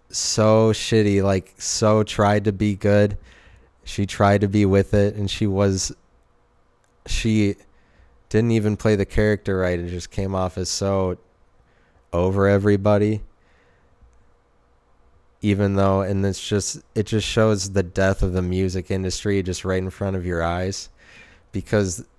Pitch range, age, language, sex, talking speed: 90-105 Hz, 20-39, English, male, 145 wpm